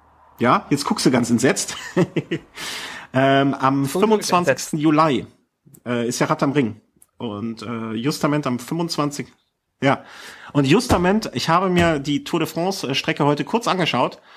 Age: 40-59